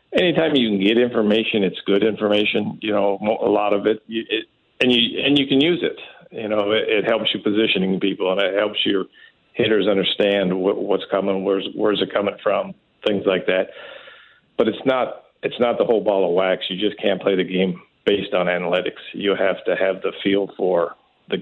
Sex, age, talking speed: male, 50-69, 205 wpm